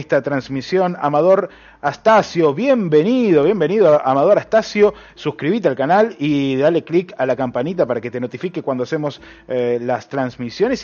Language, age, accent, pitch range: Spanish, 30-49, Argentinian, 140-180 Hz